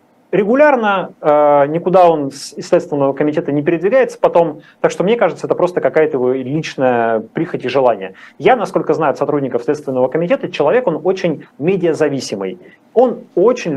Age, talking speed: 30-49, 150 wpm